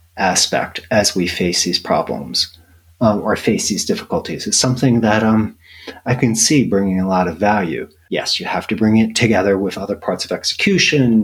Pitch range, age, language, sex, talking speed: 90-125 Hz, 40-59, English, male, 185 wpm